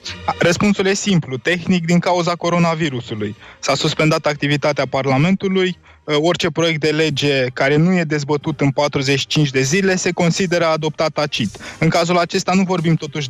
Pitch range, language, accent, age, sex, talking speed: 145-180 Hz, Romanian, native, 20-39, male, 150 wpm